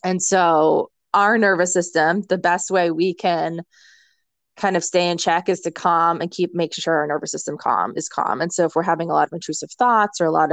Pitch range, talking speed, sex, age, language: 165-195 Hz, 235 wpm, female, 20-39, English